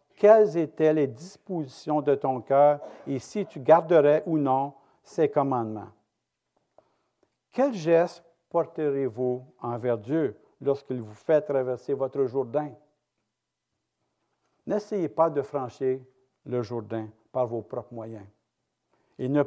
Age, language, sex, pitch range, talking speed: 60-79, French, male, 125-155 Hz, 115 wpm